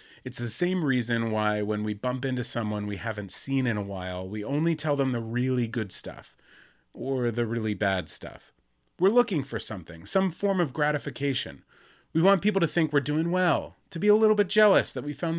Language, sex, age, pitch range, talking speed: English, male, 30-49, 105-145 Hz, 210 wpm